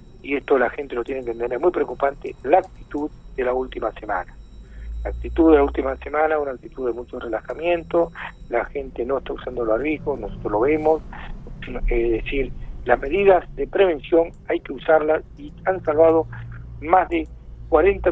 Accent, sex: Argentinian, male